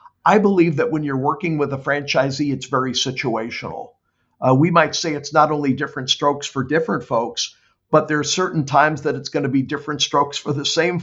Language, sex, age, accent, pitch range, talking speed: English, male, 50-69, American, 130-155 Hz, 210 wpm